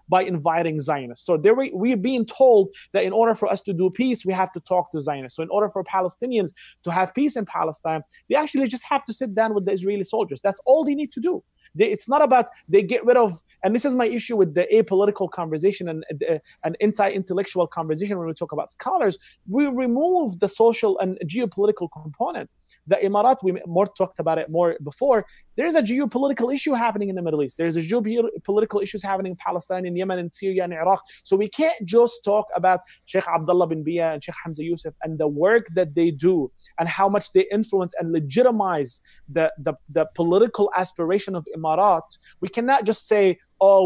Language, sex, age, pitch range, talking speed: English, male, 30-49, 170-220 Hz, 210 wpm